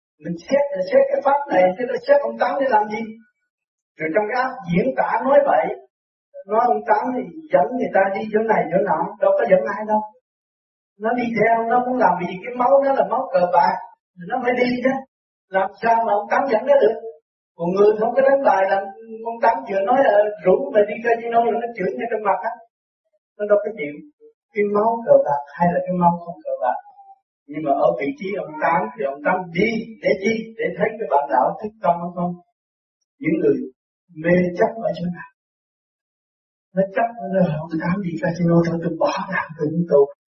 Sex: male